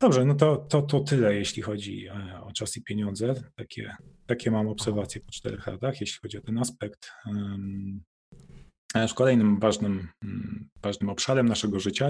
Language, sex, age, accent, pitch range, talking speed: Polish, male, 30-49, native, 100-120 Hz, 150 wpm